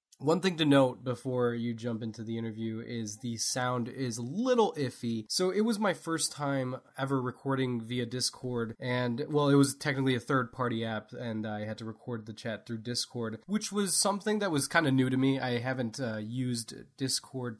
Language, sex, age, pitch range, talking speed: English, male, 20-39, 115-140 Hz, 200 wpm